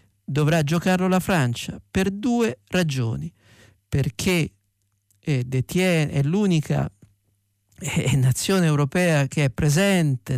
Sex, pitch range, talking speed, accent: male, 120-175 Hz, 105 wpm, native